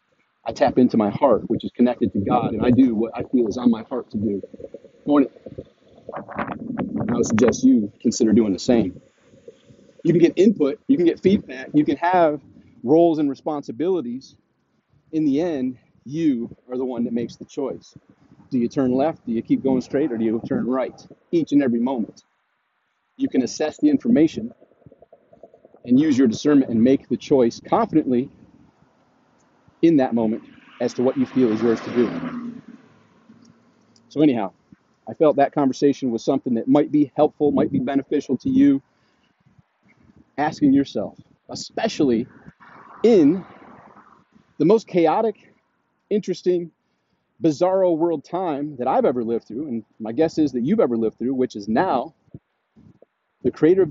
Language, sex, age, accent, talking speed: English, male, 40-59, American, 165 wpm